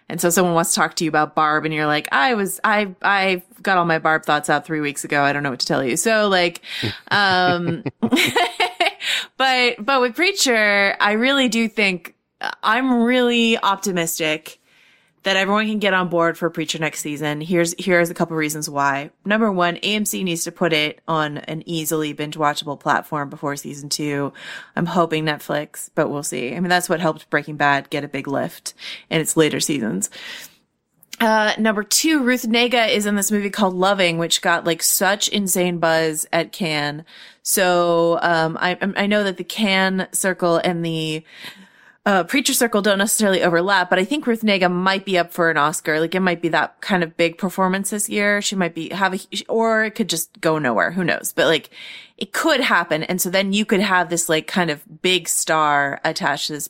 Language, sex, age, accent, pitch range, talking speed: English, female, 20-39, American, 155-200 Hz, 200 wpm